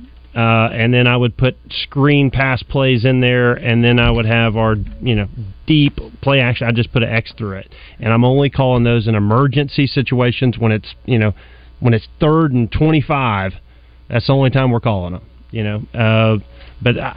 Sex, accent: male, American